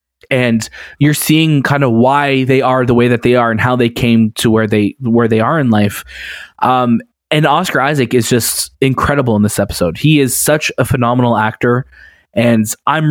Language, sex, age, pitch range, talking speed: English, male, 20-39, 115-150 Hz, 195 wpm